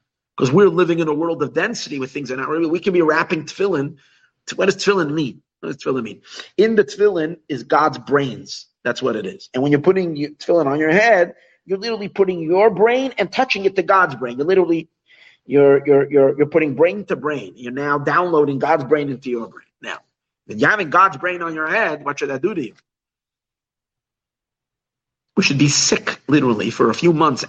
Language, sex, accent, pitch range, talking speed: English, male, American, 135-190 Hz, 215 wpm